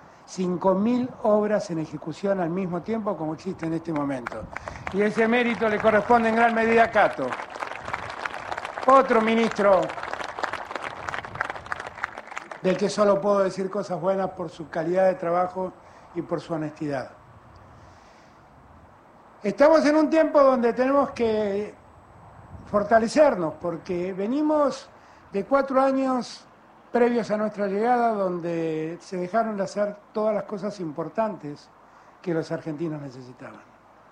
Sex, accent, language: male, Argentinian, Spanish